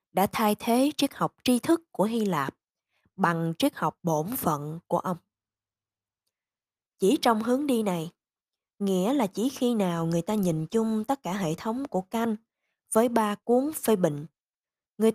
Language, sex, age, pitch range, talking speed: Vietnamese, female, 20-39, 175-245 Hz, 170 wpm